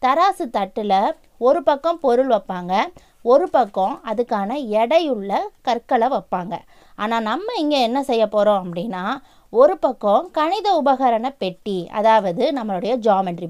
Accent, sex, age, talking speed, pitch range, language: native, female, 20-39, 120 wpm, 205-275 Hz, Tamil